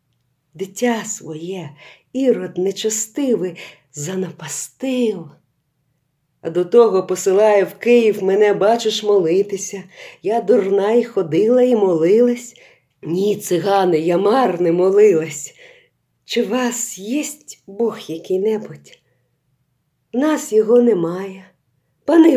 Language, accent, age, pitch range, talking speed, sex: Ukrainian, native, 40-59, 175-235 Hz, 95 wpm, female